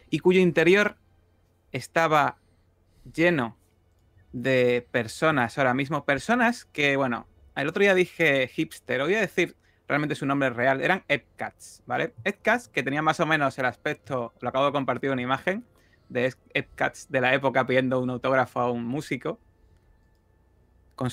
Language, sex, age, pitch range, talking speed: Spanish, male, 30-49, 115-150 Hz, 150 wpm